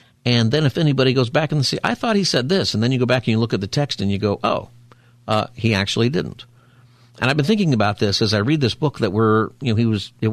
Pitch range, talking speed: 105-125 Hz, 290 wpm